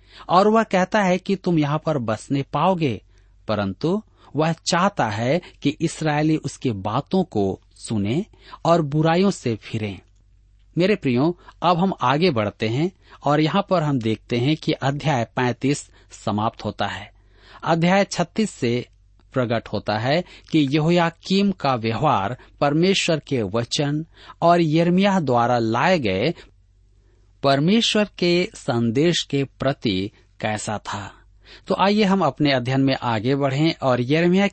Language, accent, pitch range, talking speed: Hindi, native, 110-170 Hz, 135 wpm